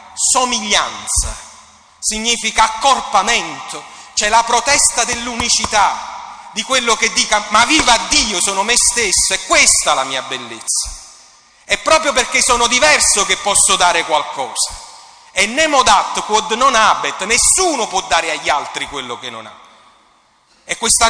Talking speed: 140 wpm